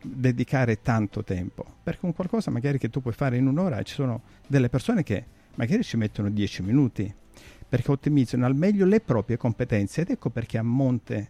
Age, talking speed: 50-69, 185 wpm